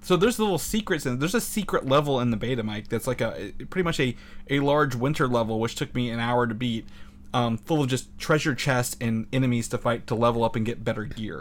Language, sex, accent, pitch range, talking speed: English, male, American, 110-140 Hz, 245 wpm